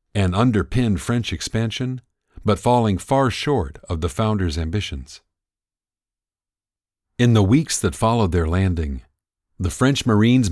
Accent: American